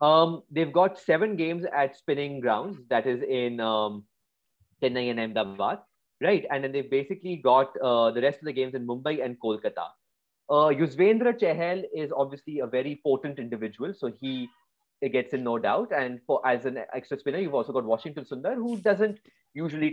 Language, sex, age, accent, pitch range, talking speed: English, male, 30-49, Indian, 130-170 Hz, 180 wpm